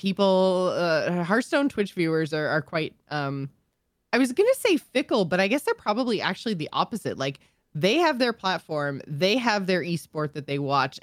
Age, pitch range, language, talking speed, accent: 20-39, 155-195 Hz, English, 190 wpm, American